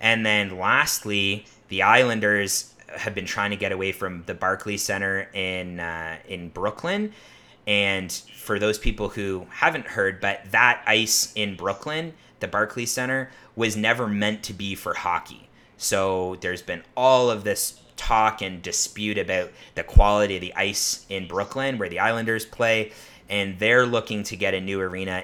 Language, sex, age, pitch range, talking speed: English, male, 30-49, 95-115 Hz, 165 wpm